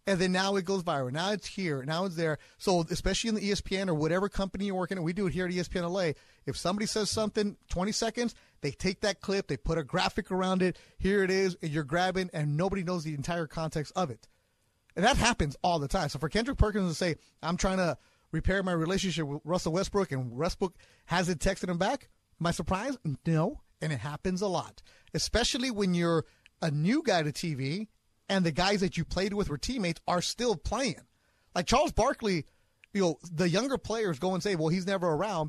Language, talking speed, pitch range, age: English, 220 wpm, 160-200 Hz, 30-49